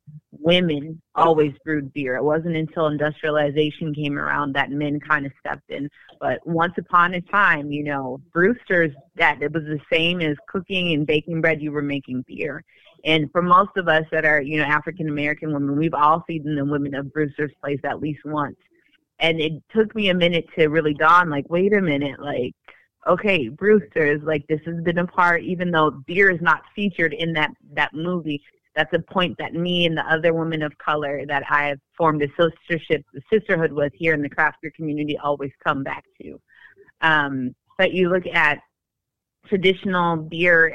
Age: 30-49